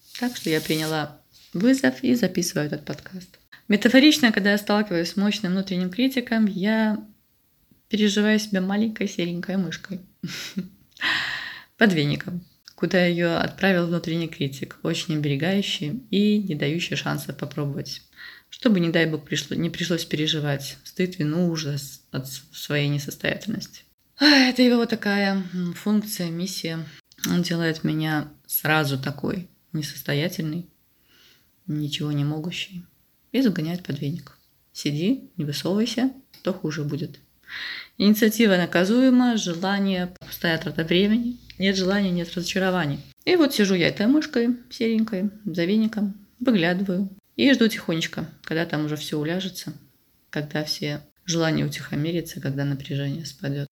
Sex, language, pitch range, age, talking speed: female, Russian, 155-210 Hz, 20-39, 125 wpm